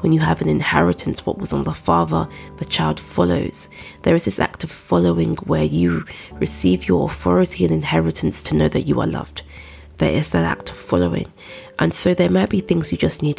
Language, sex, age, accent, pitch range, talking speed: English, female, 20-39, British, 80-90 Hz, 210 wpm